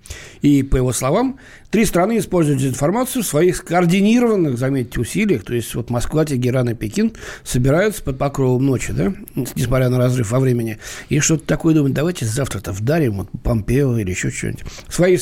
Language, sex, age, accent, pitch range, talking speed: Russian, male, 60-79, native, 125-180 Hz, 180 wpm